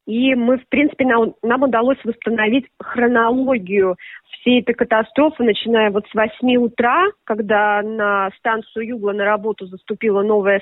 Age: 20-39